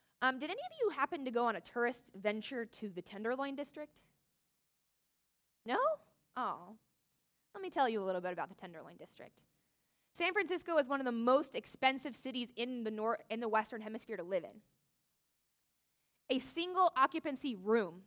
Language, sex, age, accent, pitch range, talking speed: English, female, 20-39, American, 200-260 Hz, 165 wpm